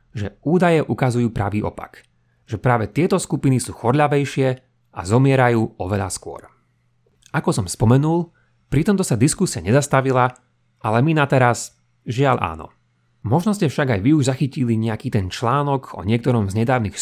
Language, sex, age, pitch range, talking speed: Slovak, male, 30-49, 110-140 Hz, 150 wpm